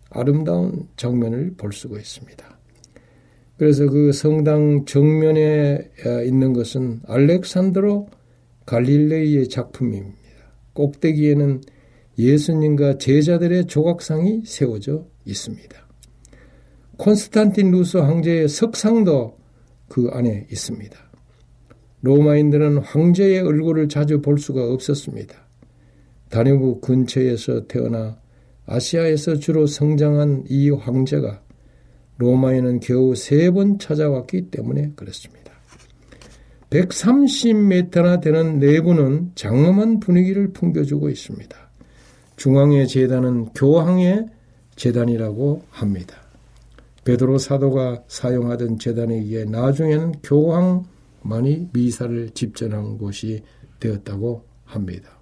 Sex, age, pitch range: male, 60-79, 120-155 Hz